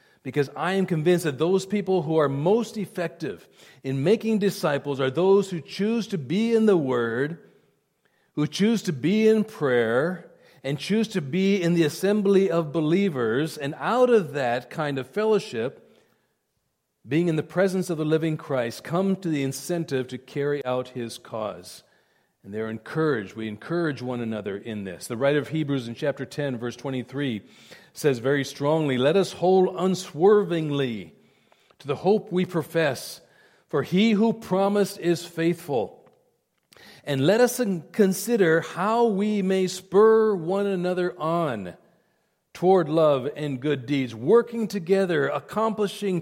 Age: 40-59